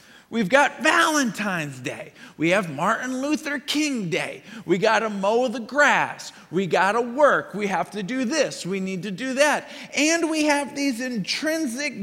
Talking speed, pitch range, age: 175 wpm, 180-260 Hz, 40-59